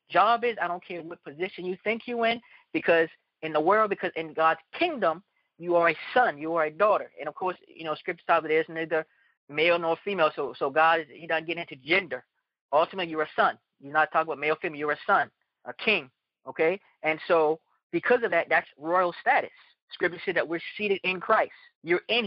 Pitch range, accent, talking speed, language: 160-215 Hz, American, 220 wpm, English